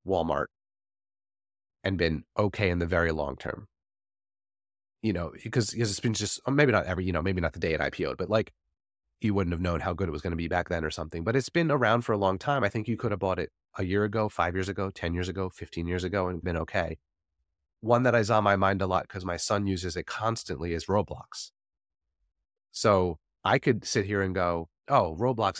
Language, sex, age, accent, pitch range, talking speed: English, male, 30-49, American, 85-110 Hz, 230 wpm